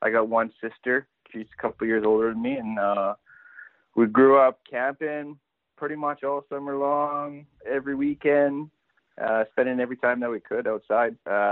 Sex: male